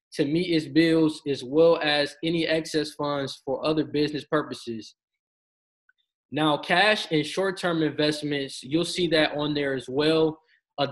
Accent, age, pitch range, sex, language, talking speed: American, 20-39, 145-165 Hz, male, English, 150 wpm